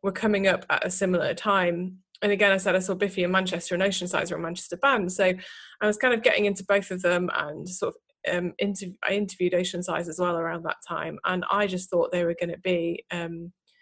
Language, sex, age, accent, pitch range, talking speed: English, female, 20-39, British, 175-200 Hz, 250 wpm